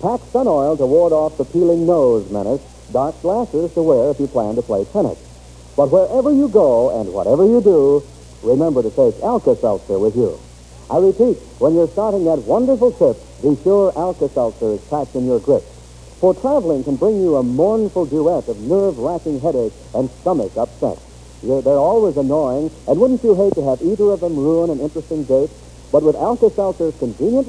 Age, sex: 70-89, male